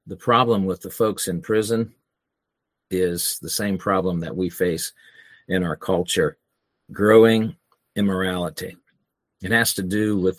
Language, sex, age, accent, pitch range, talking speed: English, male, 50-69, American, 90-115 Hz, 140 wpm